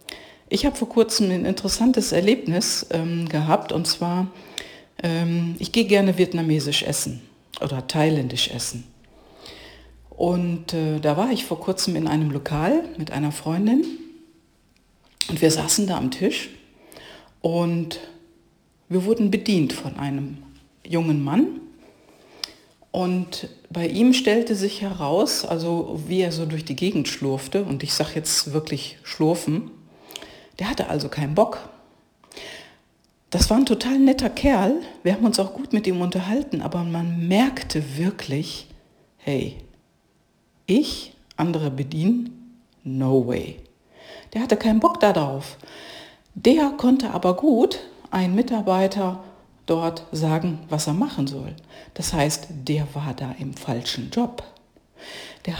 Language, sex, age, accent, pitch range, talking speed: German, female, 50-69, German, 150-220 Hz, 130 wpm